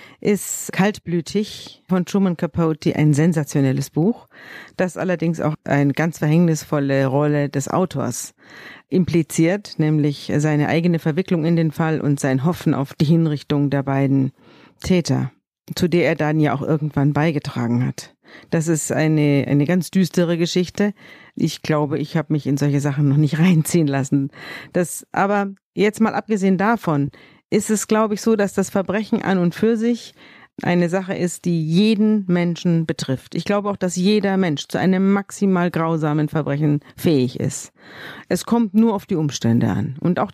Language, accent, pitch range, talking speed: German, German, 145-185 Hz, 160 wpm